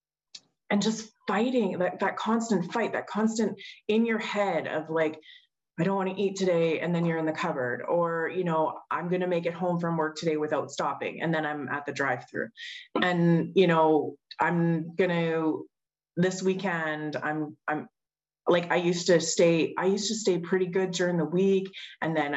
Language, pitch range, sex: English, 155-195 Hz, female